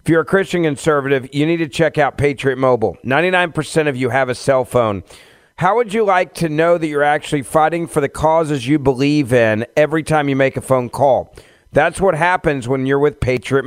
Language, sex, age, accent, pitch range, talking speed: English, male, 40-59, American, 135-170 Hz, 215 wpm